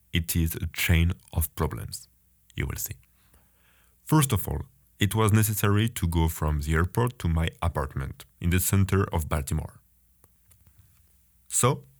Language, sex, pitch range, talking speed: English, male, 80-110 Hz, 145 wpm